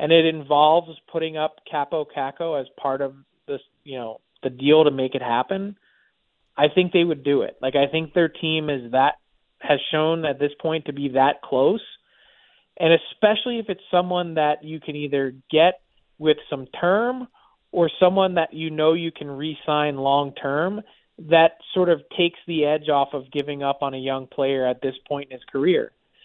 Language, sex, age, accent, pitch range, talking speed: English, male, 30-49, American, 145-170 Hz, 190 wpm